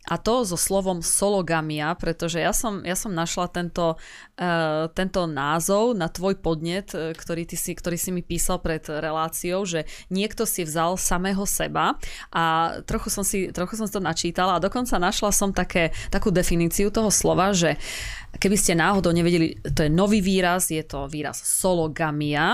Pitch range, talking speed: 165-205 Hz, 170 wpm